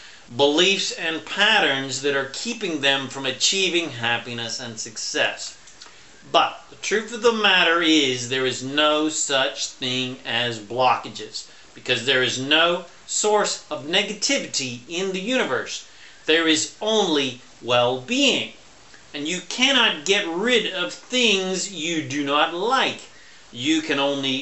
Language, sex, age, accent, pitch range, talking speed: English, male, 40-59, American, 130-180 Hz, 135 wpm